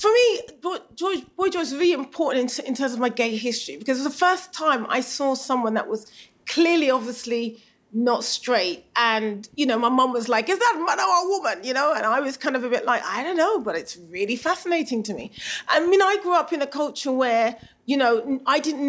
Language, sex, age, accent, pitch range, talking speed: English, female, 30-49, British, 225-295 Hz, 235 wpm